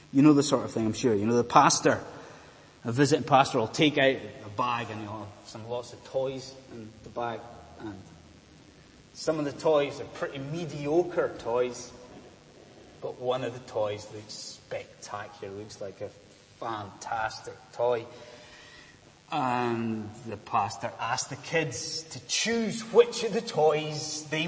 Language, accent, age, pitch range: English, British, 30-49, 110-140 Hz